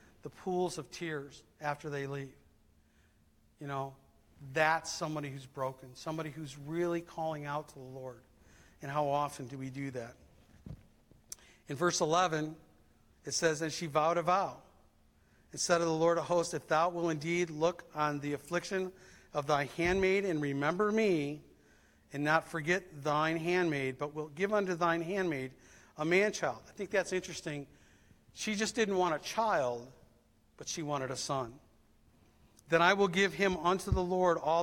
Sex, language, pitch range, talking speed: male, English, 135-175 Hz, 165 wpm